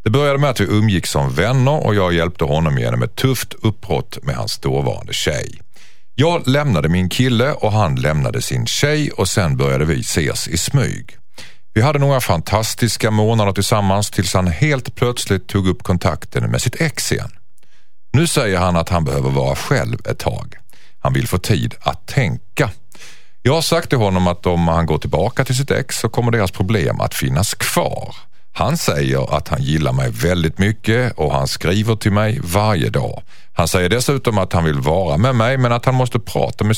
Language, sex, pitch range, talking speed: Swedish, male, 90-125 Hz, 195 wpm